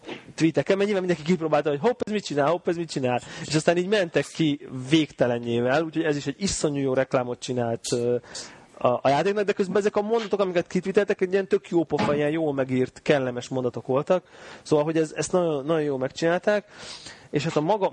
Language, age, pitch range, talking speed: Hungarian, 30-49, 125-160 Hz, 200 wpm